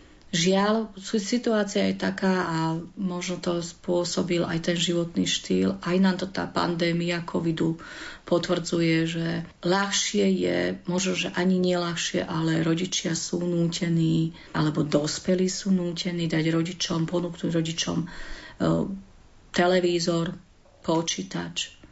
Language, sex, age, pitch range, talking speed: Slovak, female, 40-59, 160-180 Hz, 110 wpm